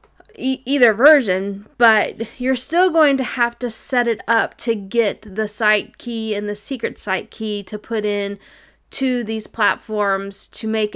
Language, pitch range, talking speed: English, 210-255 Hz, 165 wpm